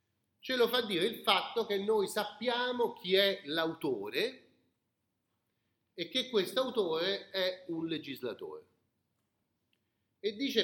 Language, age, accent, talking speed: Italian, 40-59, native, 115 wpm